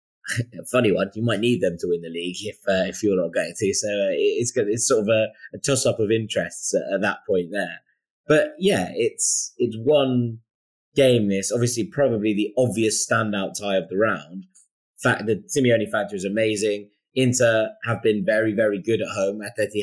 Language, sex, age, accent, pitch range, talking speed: English, male, 20-39, British, 105-125 Hz, 205 wpm